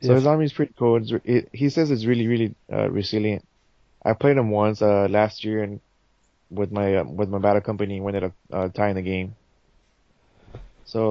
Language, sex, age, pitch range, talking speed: English, male, 20-39, 100-115 Hz, 200 wpm